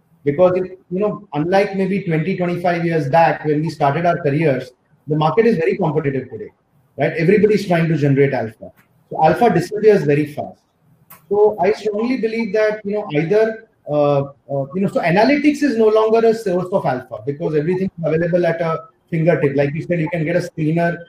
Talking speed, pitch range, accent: 195 wpm, 150-200 Hz, Indian